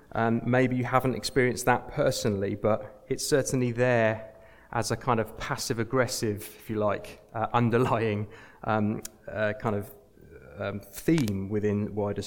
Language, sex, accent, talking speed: English, male, British, 140 wpm